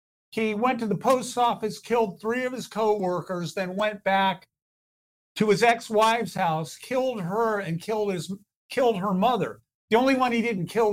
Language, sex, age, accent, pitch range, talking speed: English, male, 50-69, American, 180-230 Hz, 175 wpm